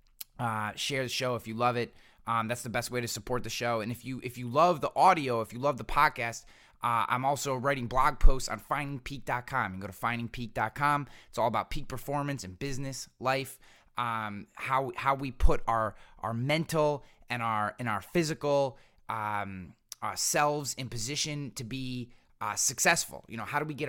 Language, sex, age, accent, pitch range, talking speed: English, male, 20-39, American, 115-145 Hz, 195 wpm